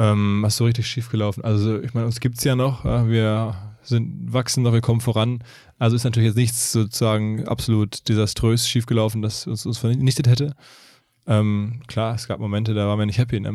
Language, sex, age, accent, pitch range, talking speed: German, male, 20-39, German, 110-120 Hz, 200 wpm